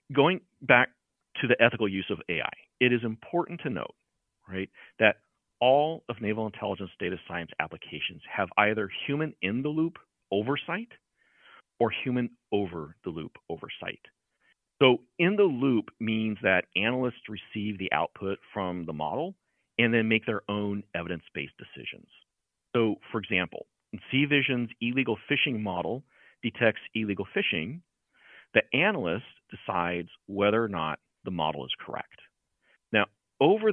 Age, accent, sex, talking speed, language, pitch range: 40-59, American, male, 140 wpm, English, 100-125 Hz